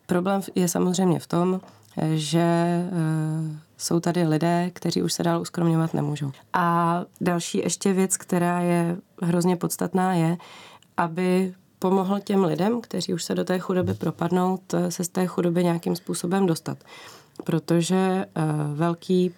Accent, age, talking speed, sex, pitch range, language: native, 20-39, 135 wpm, female, 170-185 Hz, Czech